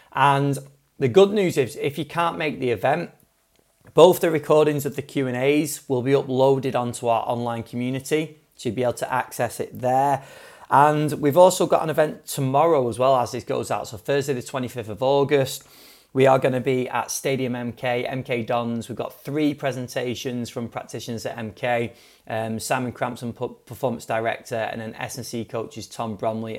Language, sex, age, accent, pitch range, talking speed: English, male, 30-49, British, 115-145 Hz, 180 wpm